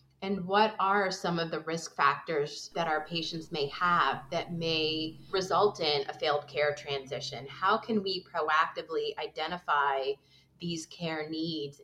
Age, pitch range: 30-49, 145-180 Hz